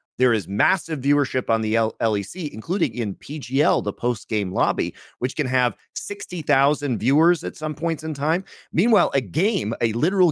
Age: 30-49